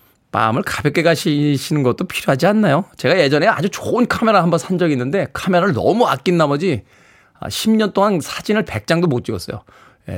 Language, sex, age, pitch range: Korean, male, 20-39, 120-175 Hz